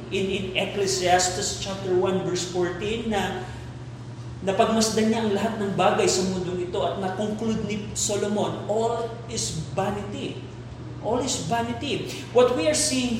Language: Filipino